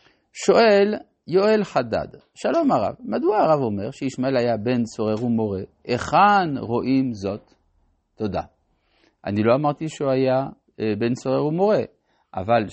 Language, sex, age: Hebrew, male, 50-69